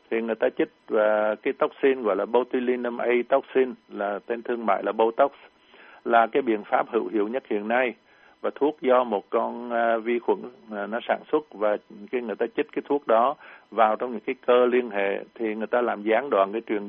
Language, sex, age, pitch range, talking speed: Vietnamese, male, 60-79, 110-125 Hz, 215 wpm